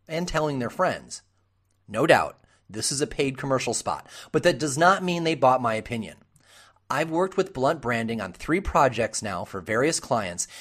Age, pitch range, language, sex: 30-49, 115-165 Hz, English, male